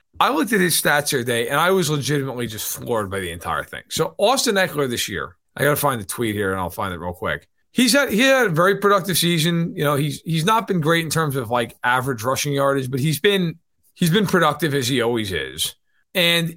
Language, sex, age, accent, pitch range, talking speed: English, male, 40-59, American, 145-200 Hz, 245 wpm